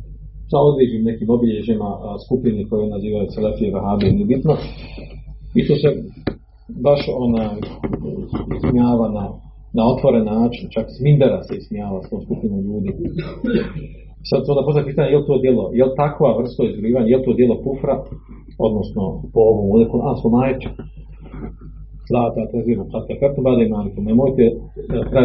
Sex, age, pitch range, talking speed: male, 40-59, 105-135 Hz, 140 wpm